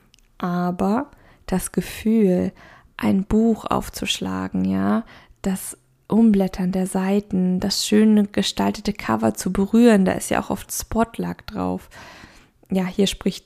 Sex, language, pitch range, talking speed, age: female, German, 190-225 Hz, 120 wpm, 20-39